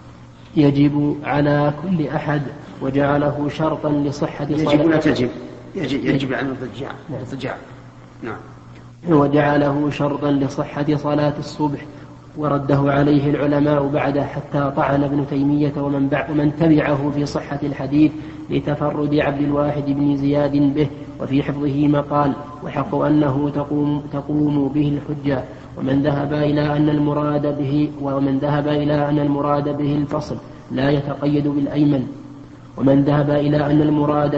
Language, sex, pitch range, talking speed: Arabic, male, 140-150 Hz, 115 wpm